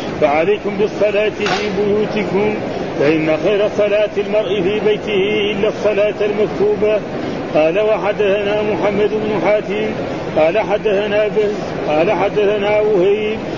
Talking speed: 105 wpm